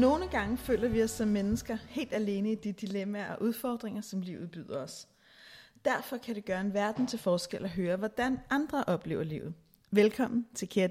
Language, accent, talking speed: Danish, native, 195 wpm